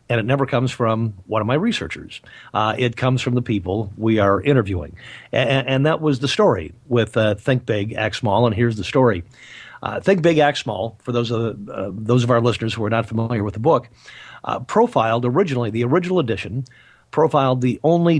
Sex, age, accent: male, 50-69, American